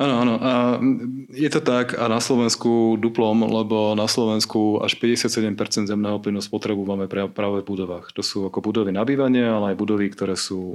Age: 30-49